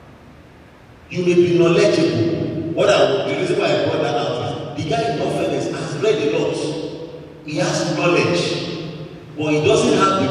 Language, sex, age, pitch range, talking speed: English, male, 50-69, 140-185 Hz, 165 wpm